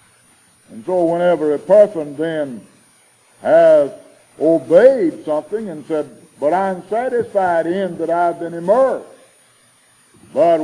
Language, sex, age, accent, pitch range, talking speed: English, male, 60-79, American, 160-210 Hz, 125 wpm